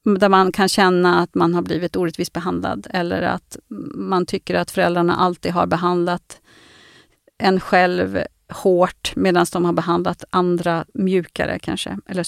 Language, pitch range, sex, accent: Swedish, 175-210 Hz, female, native